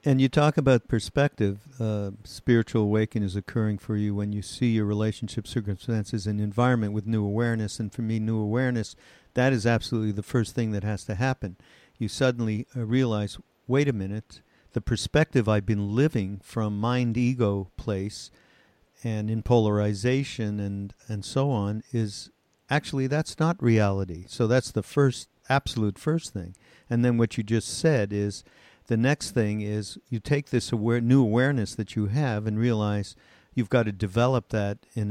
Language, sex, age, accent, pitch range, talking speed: English, male, 50-69, American, 105-125 Hz, 170 wpm